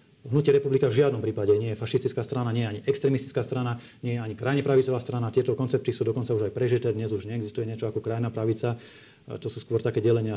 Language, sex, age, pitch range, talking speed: Slovak, male, 40-59, 115-140 Hz, 225 wpm